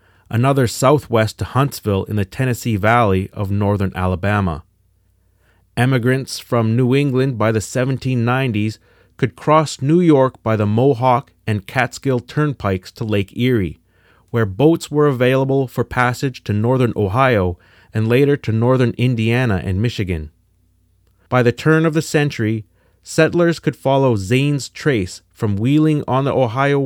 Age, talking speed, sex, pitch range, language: 30-49, 140 wpm, male, 95-130 Hz, English